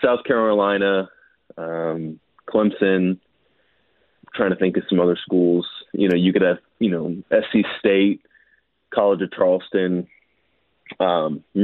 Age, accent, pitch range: 30-49, American, 90-105 Hz